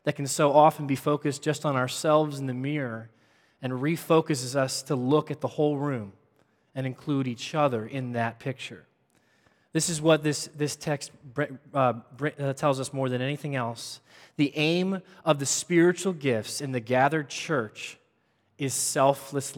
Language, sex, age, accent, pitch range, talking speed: English, male, 20-39, American, 130-165 Hz, 160 wpm